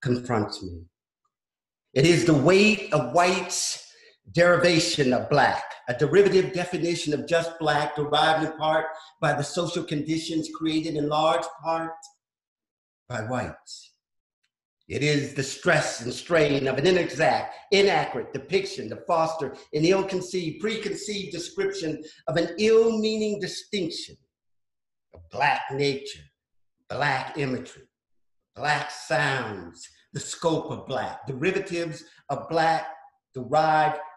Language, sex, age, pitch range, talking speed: English, male, 50-69, 145-175 Hz, 115 wpm